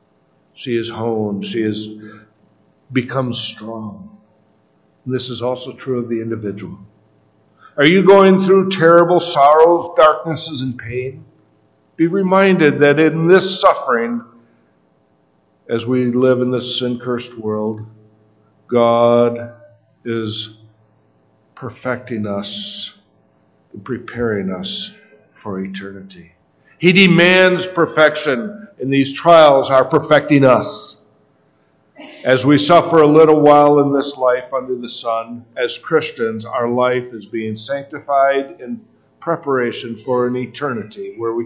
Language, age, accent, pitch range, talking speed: English, 50-69, American, 105-145 Hz, 115 wpm